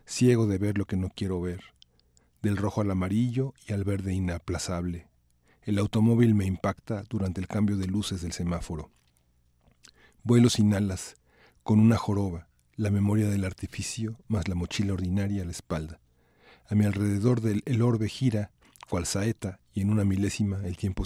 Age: 40-59